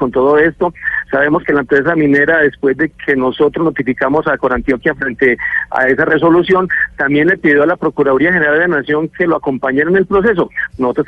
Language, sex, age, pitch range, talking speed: Spanish, male, 40-59, 135-170 Hz, 195 wpm